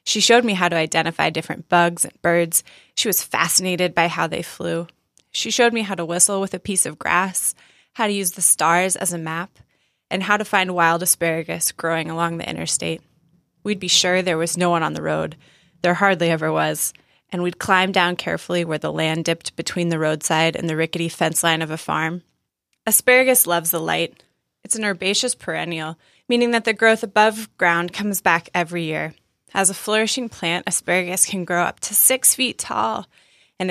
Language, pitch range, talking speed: English, 165-195 Hz, 200 wpm